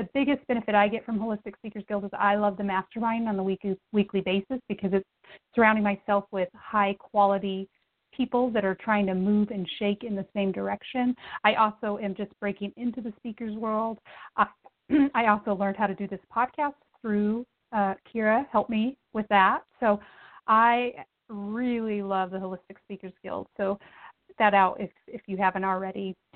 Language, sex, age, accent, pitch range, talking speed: English, female, 30-49, American, 200-250 Hz, 175 wpm